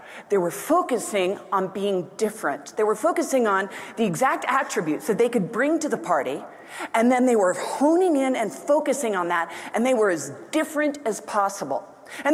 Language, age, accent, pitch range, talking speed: English, 40-59, American, 220-295 Hz, 185 wpm